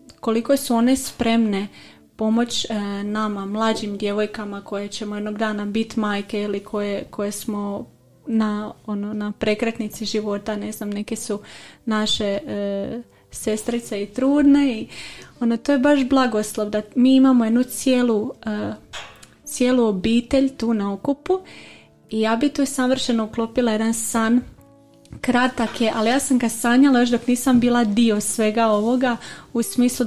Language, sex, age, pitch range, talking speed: Croatian, female, 30-49, 215-245 Hz, 145 wpm